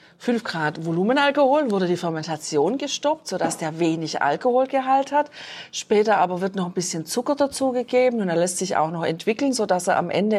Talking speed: 180 wpm